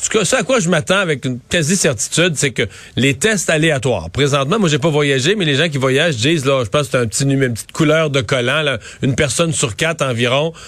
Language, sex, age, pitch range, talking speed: French, male, 40-59, 120-150 Hz, 240 wpm